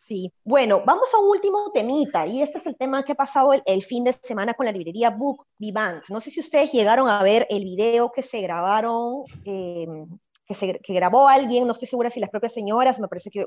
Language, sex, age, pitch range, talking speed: Spanish, male, 20-39, 190-240 Hz, 235 wpm